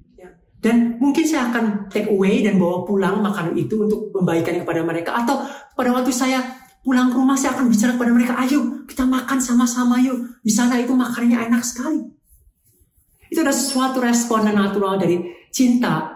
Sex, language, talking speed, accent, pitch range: male, Indonesian, 165 wpm, native, 195-255 Hz